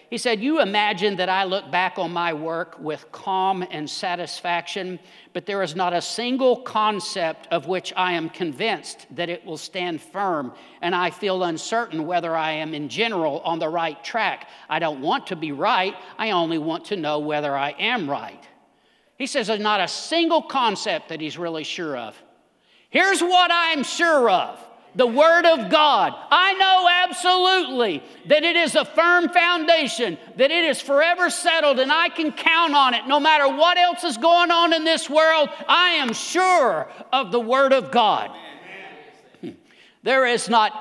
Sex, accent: male, American